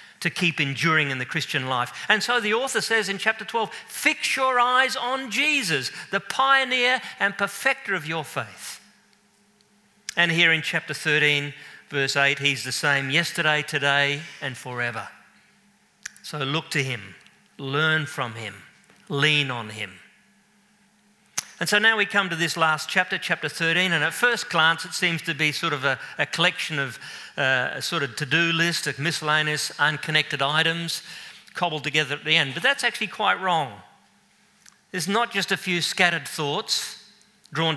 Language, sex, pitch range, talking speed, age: English, male, 150-205 Hz, 165 wpm, 50-69